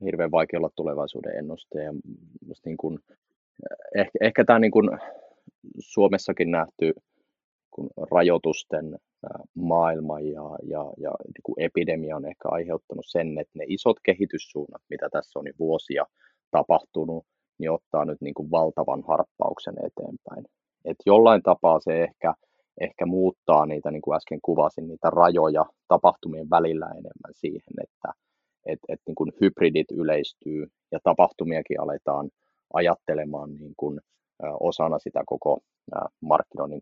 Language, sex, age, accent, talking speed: Finnish, male, 30-49, native, 130 wpm